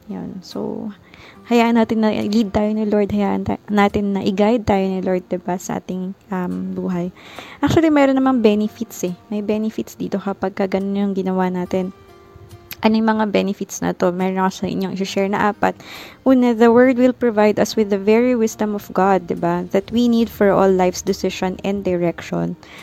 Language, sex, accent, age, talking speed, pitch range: Filipino, female, native, 20-39, 185 wpm, 190-225 Hz